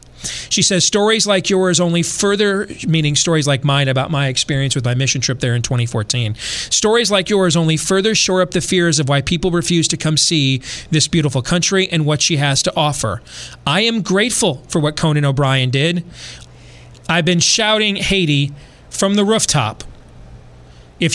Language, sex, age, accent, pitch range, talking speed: English, male, 30-49, American, 120-165 Hz, 175 wpm